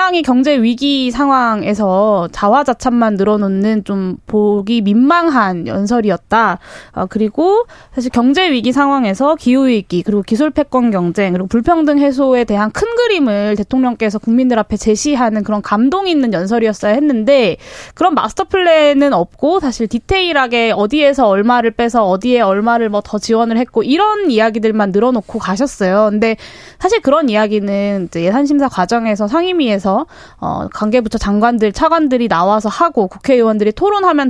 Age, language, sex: 20-39, Korean, female